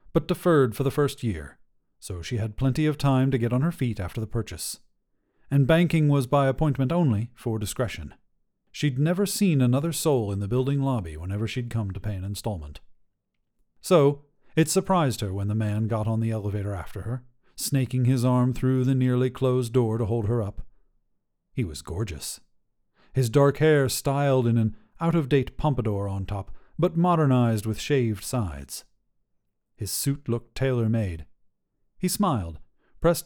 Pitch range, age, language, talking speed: 105-140 Hz, 40-59, English, 170 wpm